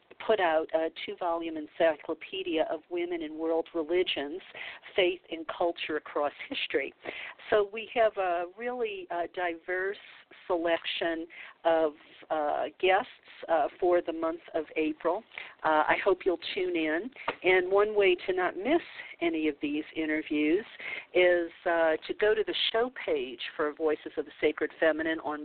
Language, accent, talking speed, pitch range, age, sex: English, American, 135 wpm, 160-225 Hz, 50-69, female